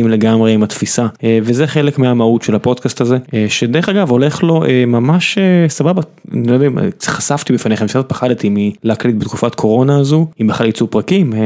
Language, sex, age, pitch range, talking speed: Hebrew, male, 20-39, 110-140 Hz, 170 wpm